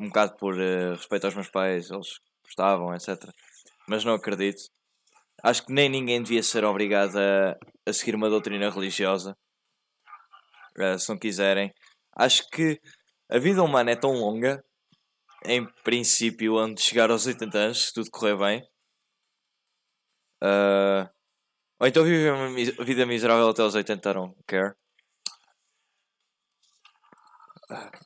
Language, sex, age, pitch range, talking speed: Portuguese, male, 10-29, 95-130 Hz, 140 wpm